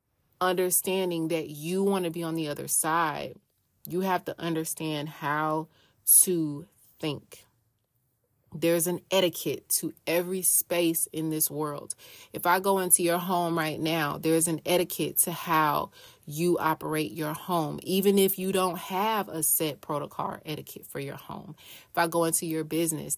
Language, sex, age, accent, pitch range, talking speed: English, female, 30-49, American, 155-190 Hz, 160 wpm